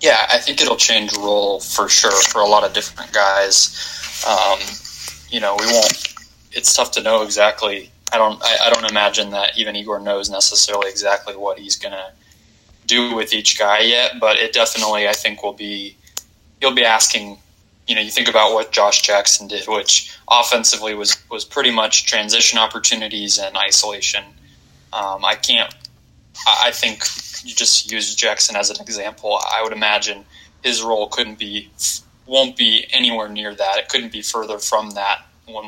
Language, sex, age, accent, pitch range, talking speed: English, male, 20-39, American, 100-110 Hz, 175 wpm